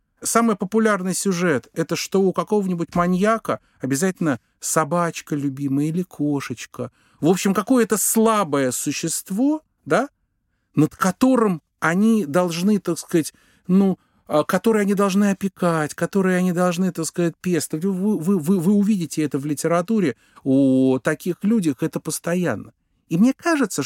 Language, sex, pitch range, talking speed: Russian, male, 135-185 Hz, 135 wpm